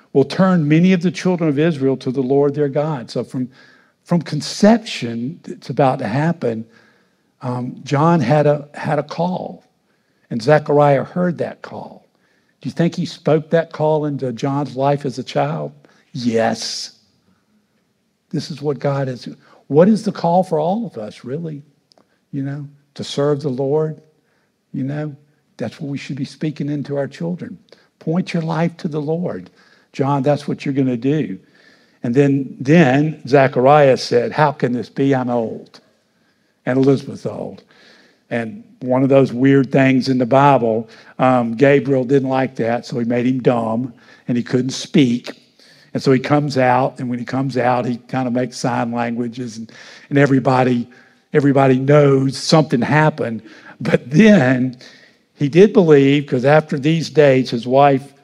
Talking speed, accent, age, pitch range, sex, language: 165 wpm, American, 50-69, 130-155 Hz, male, English